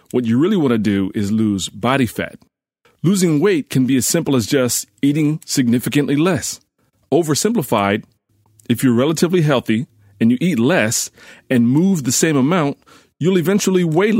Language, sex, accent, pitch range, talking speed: English, male, American, 110-140 Hz, 160 wpm